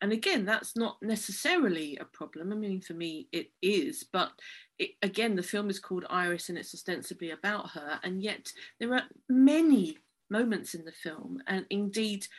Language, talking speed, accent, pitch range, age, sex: English, 175 wpm, British, 180-220 Hz, 40-59, female